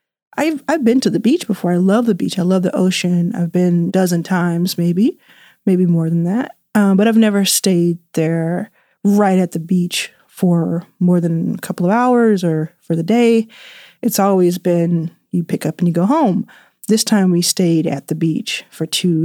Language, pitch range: English, 170-200 Hz